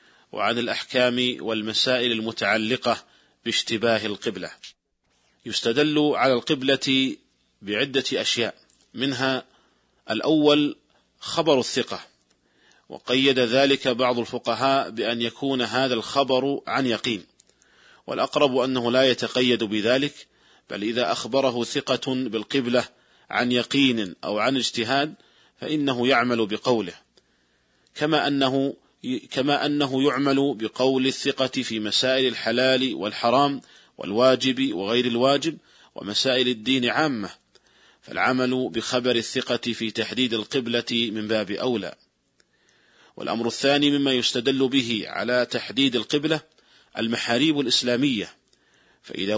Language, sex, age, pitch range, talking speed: Arabic, male, 40-59, 115-135 Hz, 95 wpm